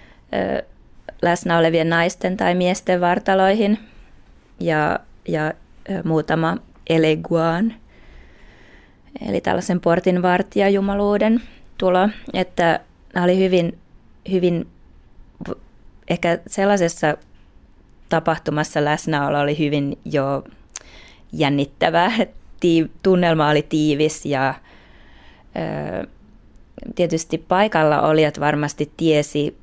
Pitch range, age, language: 155-195 Hz, 20-39, Finnish